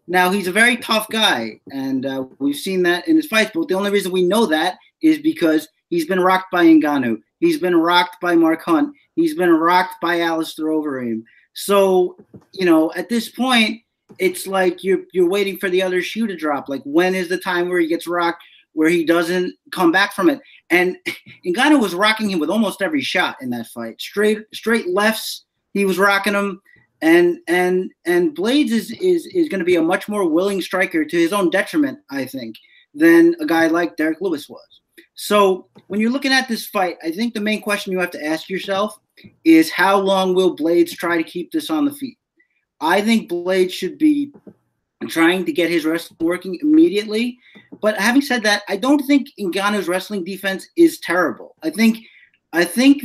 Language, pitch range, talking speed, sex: English, 175-255 Hz, 200 wpm, male